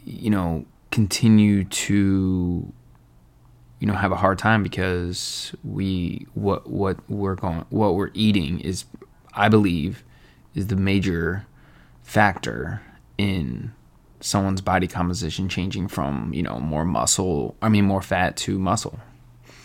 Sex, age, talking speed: male, 20-39, 130 wpm